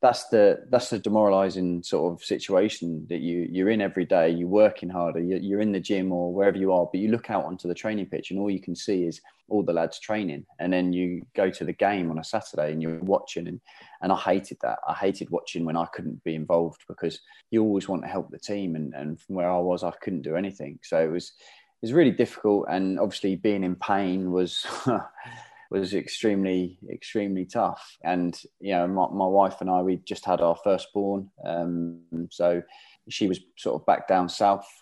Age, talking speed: 20-39, 215 wpm